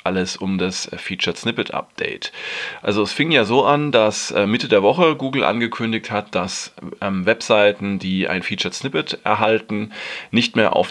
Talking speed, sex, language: 165 wpm, male, German